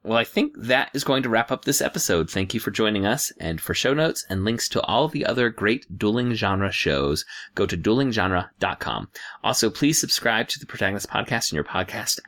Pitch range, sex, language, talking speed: 90-115 Hz, male, English, 210 wpm